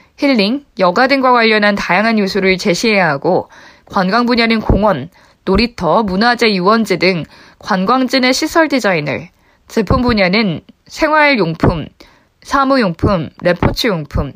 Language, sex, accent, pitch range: Korean, female, native, 195-265 Hz